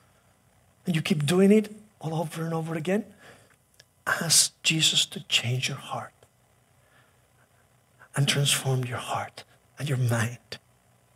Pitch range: 120-200 Hz